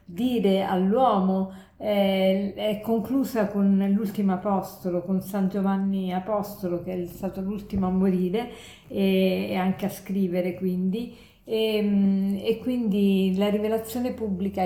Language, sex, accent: Italian, female, native